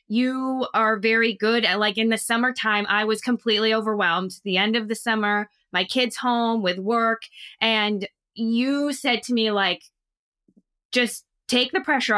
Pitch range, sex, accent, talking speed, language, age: 205-240 Hz, female, American, 165 wpm, English, 20-39